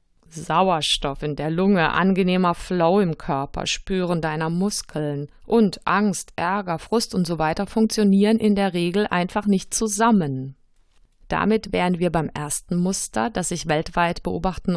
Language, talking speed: German, 140 wpm